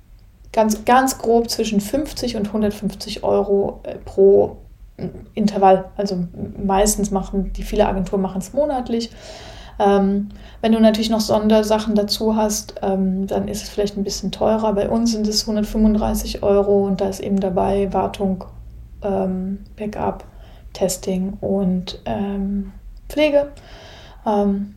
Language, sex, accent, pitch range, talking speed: German, female, German, 195-220 Hz, 130 wpm